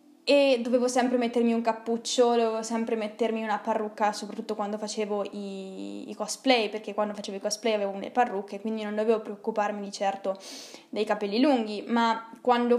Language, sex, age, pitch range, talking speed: Italian, female, 10-29, 210-245 Hz, 170 wpm